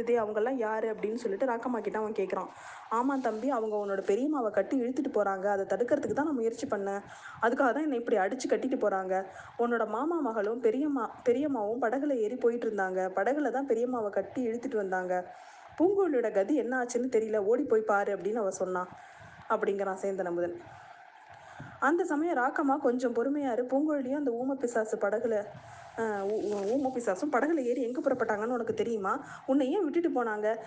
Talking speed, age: 90 wpm, 20-39